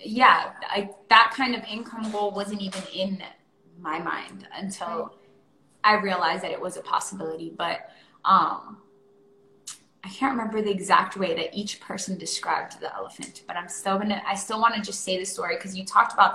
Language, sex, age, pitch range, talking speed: English, female, 20-39, 190-225 Hz, 185 wpm